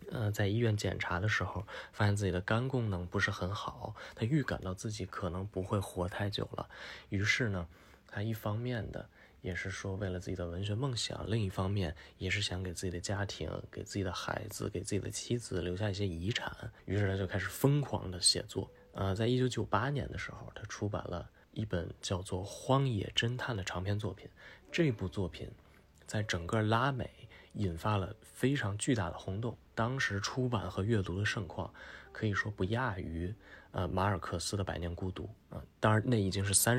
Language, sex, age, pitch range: Chinese, male, 20-39, 90-110 Hz